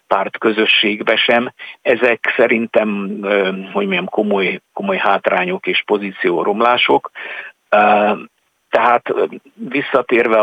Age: 50-69